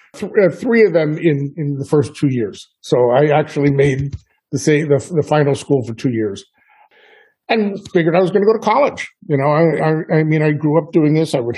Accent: American